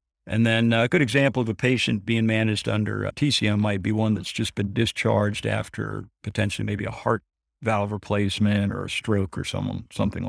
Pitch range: 100-115 Hz